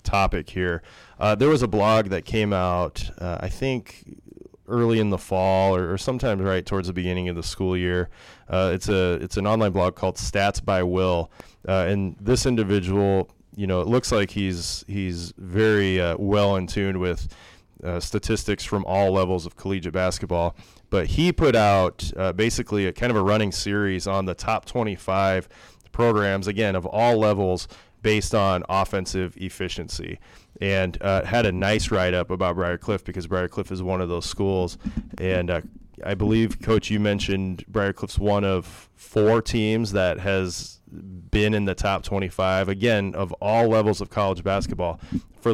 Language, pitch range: English, 90-105 Hz